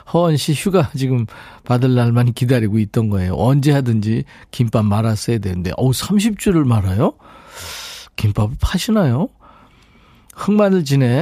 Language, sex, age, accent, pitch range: Korean, male, 40-59, native, 110-165 Hz